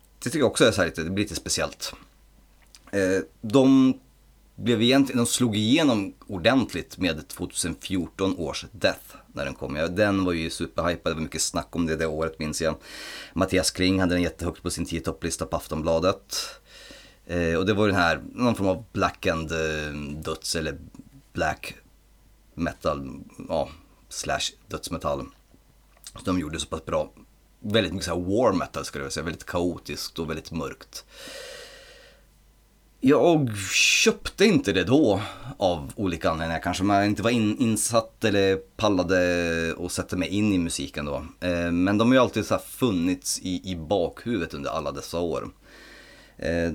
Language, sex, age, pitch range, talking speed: Swedish, male, 30-49, 80-105 Hz, 160 wpm